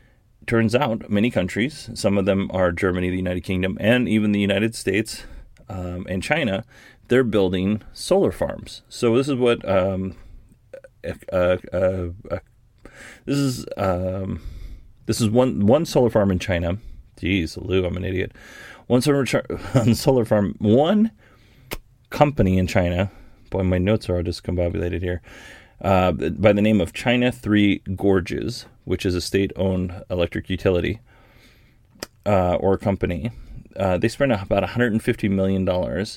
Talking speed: 145 wpm